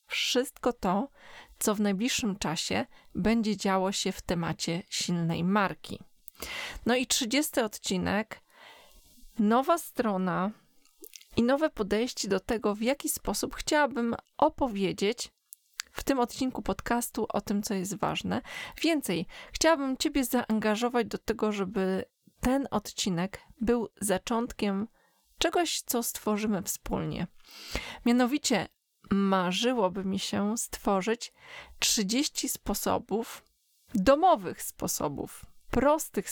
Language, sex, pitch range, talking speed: Polish, female, 200-265 Hz, 105 wpm